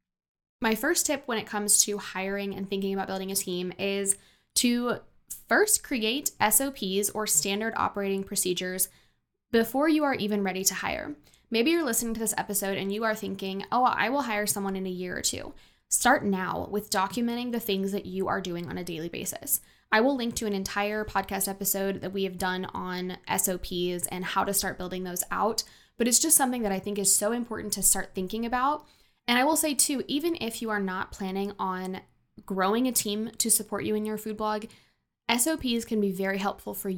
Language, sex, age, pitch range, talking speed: English, female, 10-29, 185-225 Hz, 205 wpm